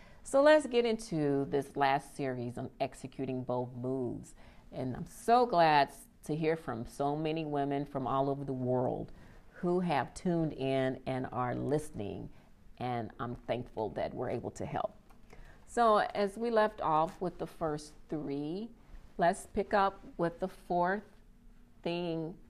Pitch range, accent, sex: 145-215 Hz, American, female